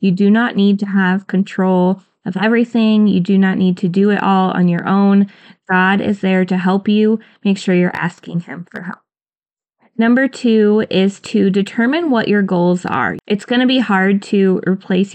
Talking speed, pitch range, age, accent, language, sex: 195 wpm, 185-215 Hz, 20-39, American, English, female